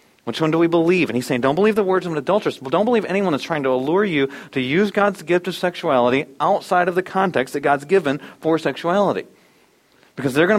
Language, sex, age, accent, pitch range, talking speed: English, male, 40-59, American, 120-175 Hz, 230 wpm